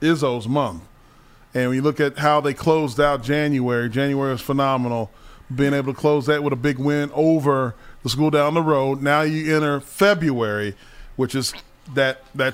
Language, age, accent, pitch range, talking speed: English, 40-59, American, 130-155 Hz, 175 wpm